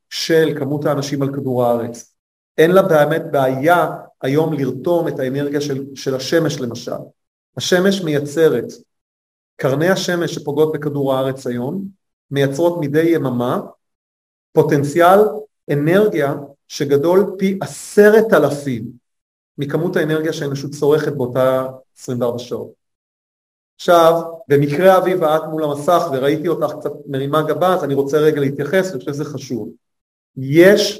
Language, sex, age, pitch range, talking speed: Hebrew, male, 30-49, 130-165 Hz, 125 wpm